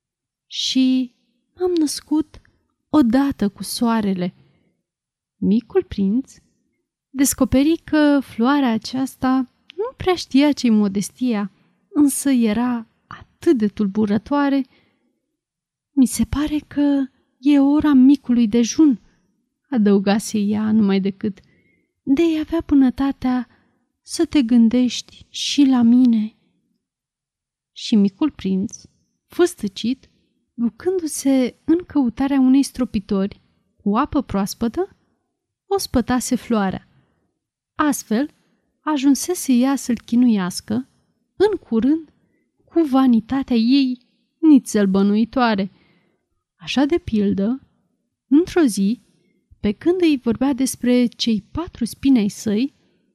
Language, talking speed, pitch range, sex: Romanian, 95 wpm, 220-285 Hz, female